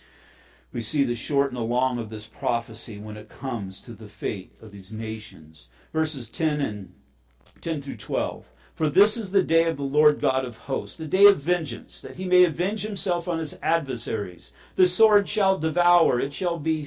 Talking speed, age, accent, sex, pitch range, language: 195 wpm, 50-69, American, male, 120-160 Hz, English